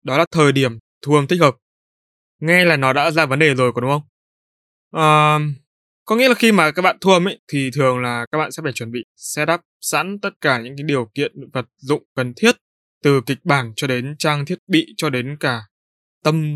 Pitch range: 120-160 Hz